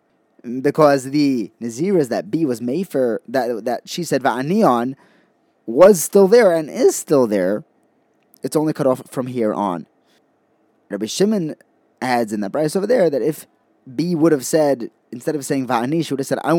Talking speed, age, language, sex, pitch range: 185 wpm, 20-39, English, male, 120-165 Hz